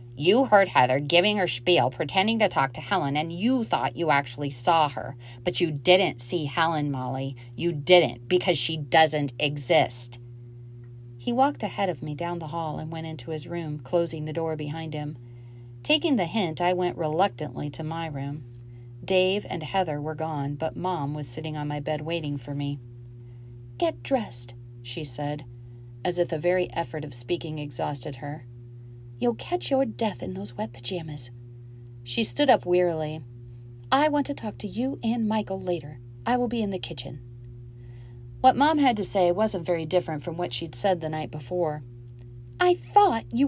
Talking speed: 180 wpm